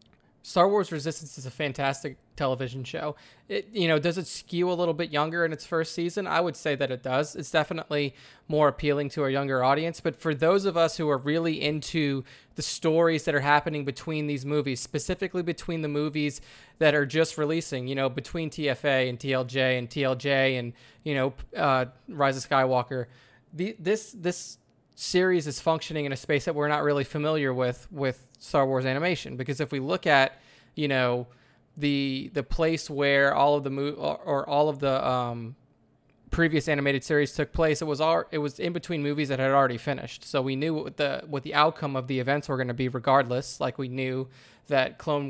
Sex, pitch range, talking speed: male, 130-155 Hz, 205 wpm